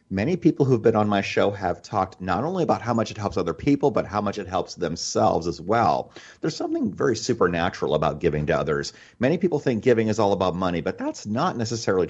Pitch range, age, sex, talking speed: 90-125 Hz, 40-59, male, 230 wpm